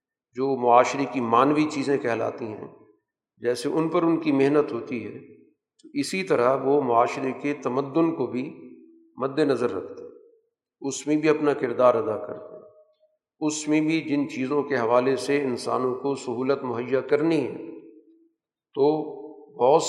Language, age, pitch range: Urdu, 50-69, 130-180 Hz